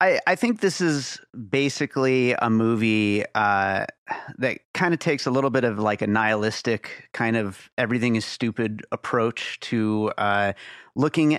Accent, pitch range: American, 110-135 Hz